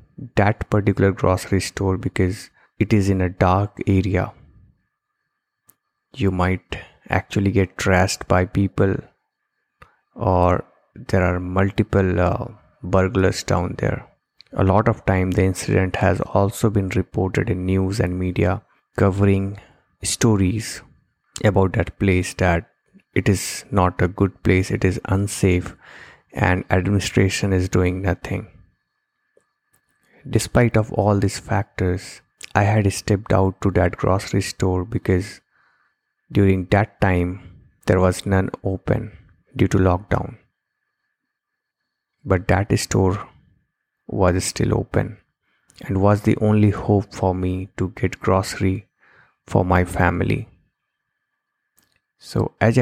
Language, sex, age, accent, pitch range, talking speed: English, male, 20-39, Indian, 90-105 Hz, 120 wpm